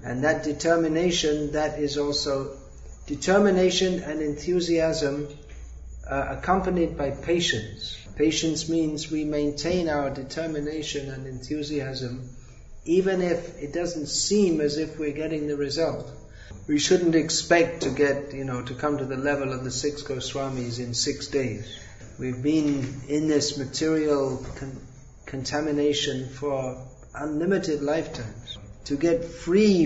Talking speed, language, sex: 130 wpm, English, male